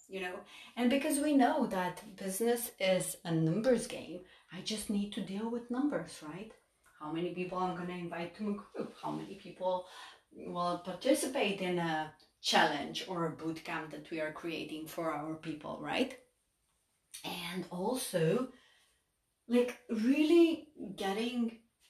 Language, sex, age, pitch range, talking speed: English, female, 30-49, 165-205 Hz, 150 wpm